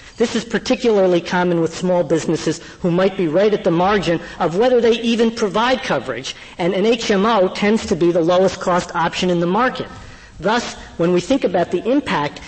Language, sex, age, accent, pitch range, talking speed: English, female, 50-69, American, 165-205 Hz, 190 wpm